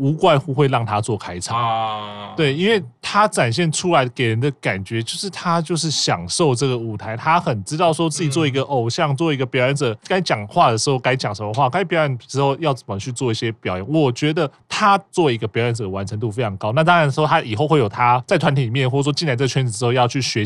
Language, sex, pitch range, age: Chinese, male, 115-155 Hz, 20-39